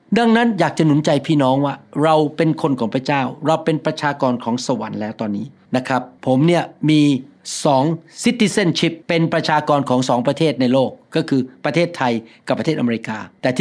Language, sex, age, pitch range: Thai, male, 60-79, 135-175 Hz